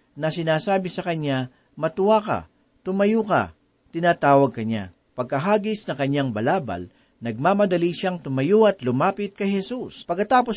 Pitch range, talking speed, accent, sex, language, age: 130-185 Hz, 125 wpm, native, male, Filipino, 40-59